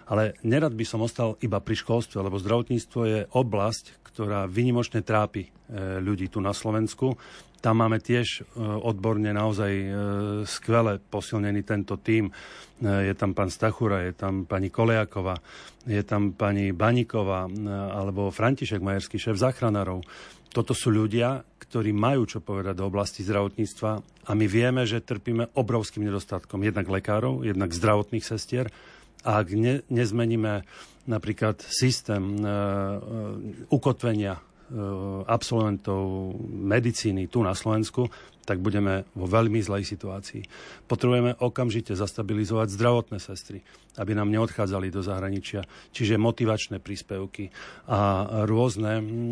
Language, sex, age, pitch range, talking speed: Slovak, male, 40-59, 100-115 Hz, 125 wpm